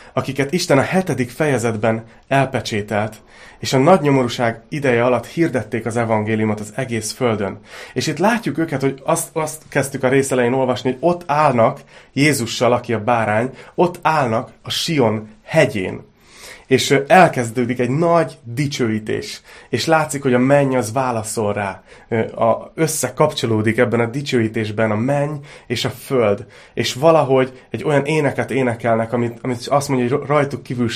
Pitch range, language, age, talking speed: 115-140 Hz, Hungarian, 30-49, 150 wpm